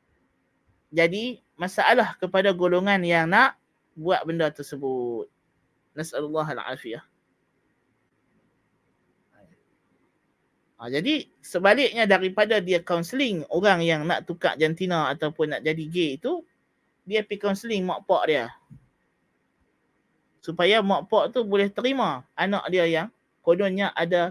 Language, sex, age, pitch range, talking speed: Malay, male, 20-39, 175-230 Hz, 110 wpm